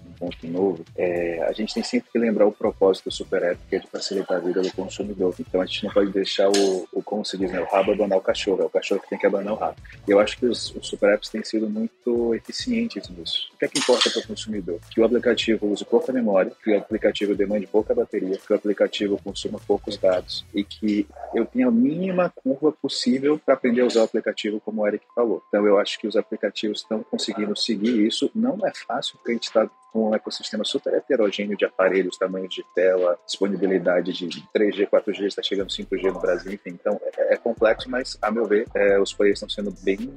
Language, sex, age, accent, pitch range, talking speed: English, male, 40-59, Brazilian, 100-130 Hz, 230 wpm